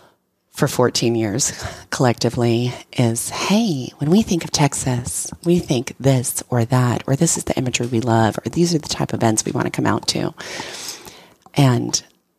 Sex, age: female, 30-49